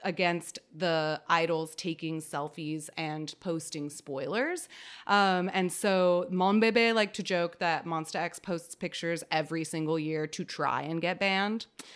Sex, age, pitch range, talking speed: female, 30-49, 155-190 Hz, 140 wpm